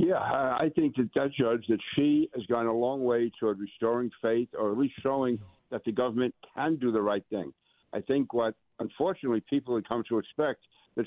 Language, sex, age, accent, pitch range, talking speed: English, male, 60-79, American, 105-125 Hz, 205 wpm